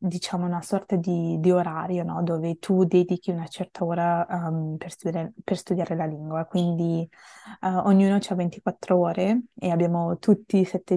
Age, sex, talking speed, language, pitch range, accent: 20-39, female, 165 wpm, Italian, 165-190 Hz, native